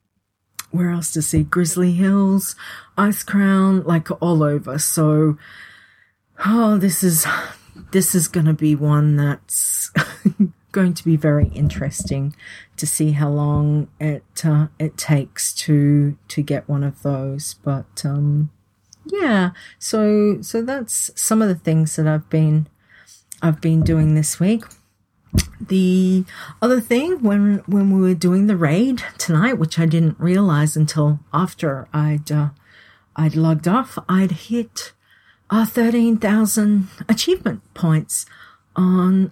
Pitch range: 150-200 Hz